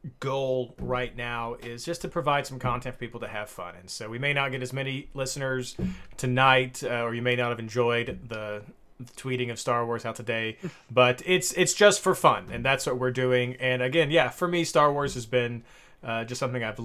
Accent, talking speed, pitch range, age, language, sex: American, 220 wpm, 110-130 Hz, 30-49, English, male